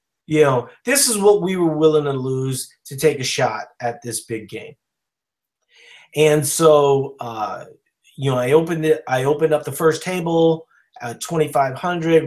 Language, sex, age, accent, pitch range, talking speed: English, male, 30-49, American, 130-165 Hz, 165 wpm